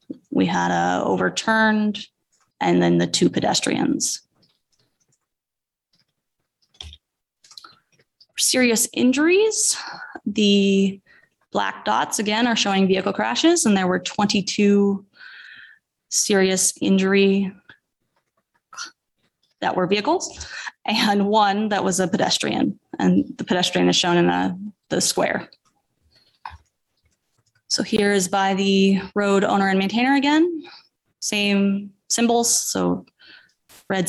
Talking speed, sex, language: 100 wpm, female, English